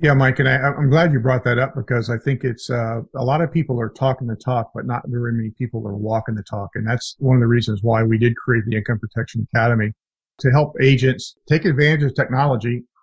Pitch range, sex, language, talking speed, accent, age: 120-140 Hz, male, English, 240 wpm, American, 50-69